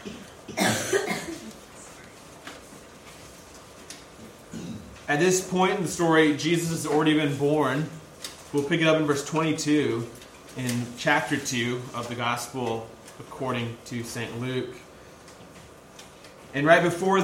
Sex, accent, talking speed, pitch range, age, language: male, American, 110 wpm, 120-150 Hz, 30-49, English